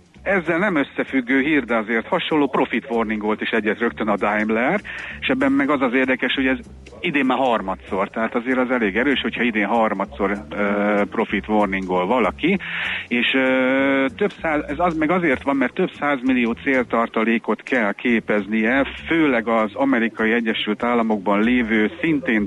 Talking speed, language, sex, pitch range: 160 wpm, Hungarian, male, 105-125 Hz